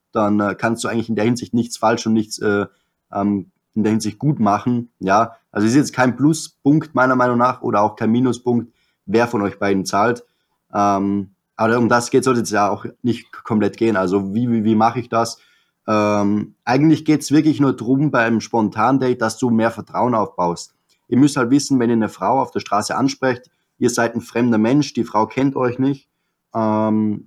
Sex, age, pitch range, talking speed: male, 20-39, 110-135 Hz, 200 wpm